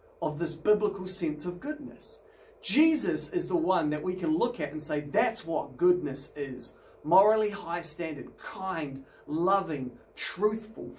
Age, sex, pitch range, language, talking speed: 30-49, male, 155-260 Hz, English, 140 wpm